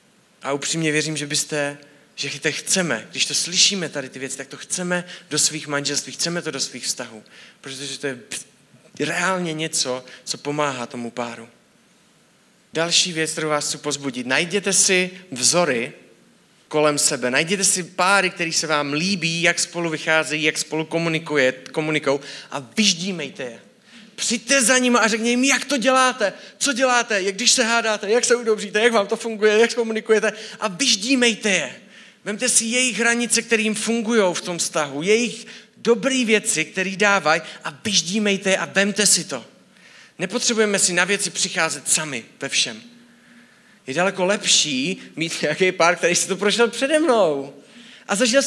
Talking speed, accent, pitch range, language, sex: 165 wpm, native, 155-230 Hz, Czech, male